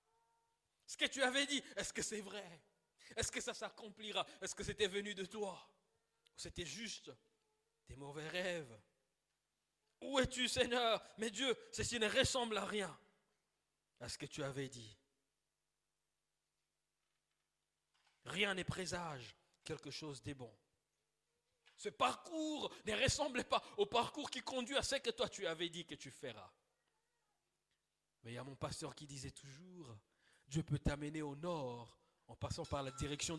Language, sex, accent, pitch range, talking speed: French, male, French, 125-210 Hz, 155 wpm